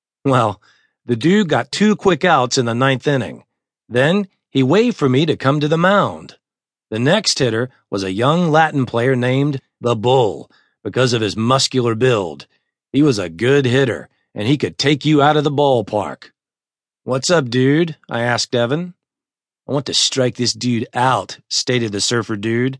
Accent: American